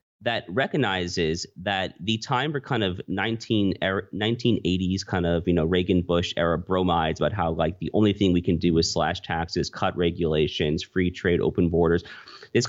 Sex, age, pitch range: male, 30-49, 85-100 Hz